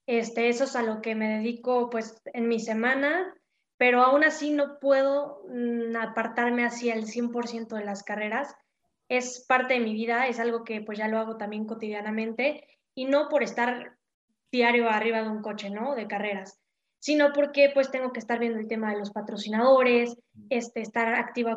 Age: 20-39